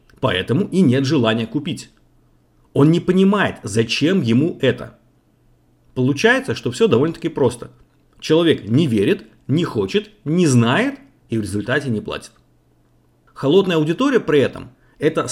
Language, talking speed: Russian, 130 wpm